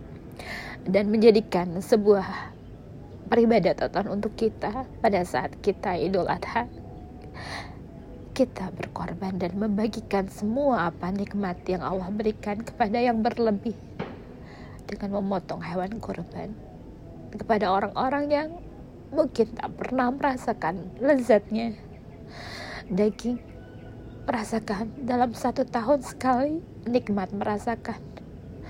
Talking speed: 90 wpm